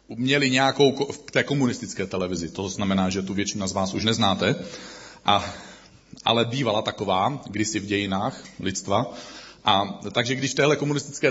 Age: 40-59